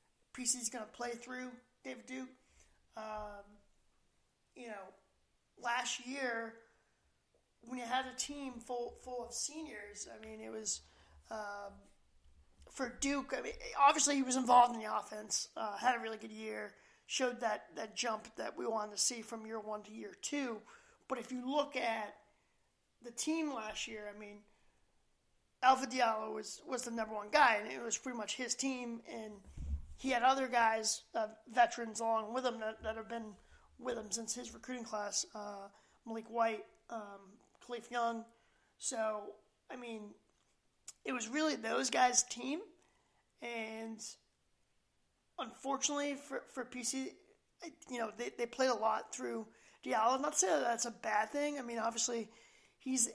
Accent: American